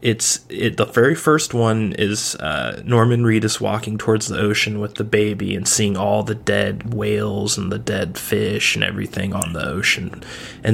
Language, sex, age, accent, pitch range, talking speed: English, male, 30-49, American, 105-125 Hz, 185 wpm